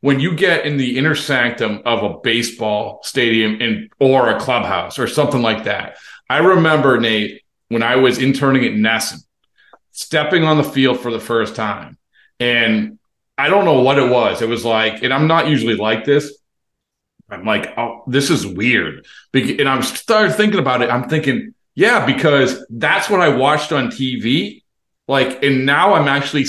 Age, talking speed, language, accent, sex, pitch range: 40-59, 185 wpm, English, American, male, 115-145 Hz